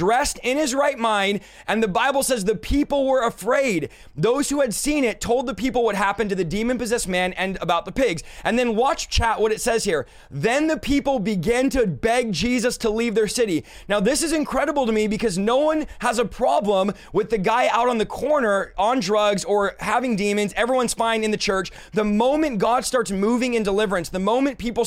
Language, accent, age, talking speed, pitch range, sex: English, American, 20-39, 215 wpm, 200-250 Hz, male